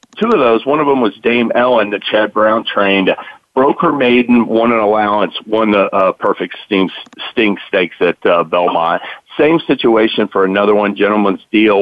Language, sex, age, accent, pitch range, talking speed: English, male, 50-69, American, 100-115 Hz, 170 wpm